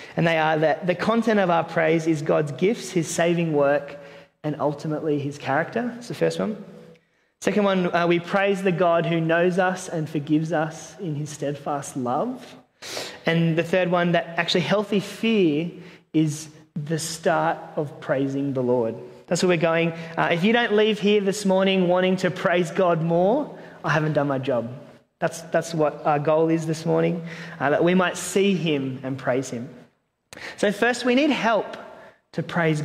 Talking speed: 185 wpm